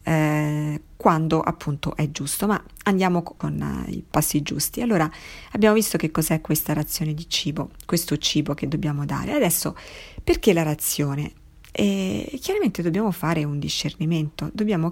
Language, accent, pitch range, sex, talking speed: Italian, native, 150-175 Hz, female, 140 wpm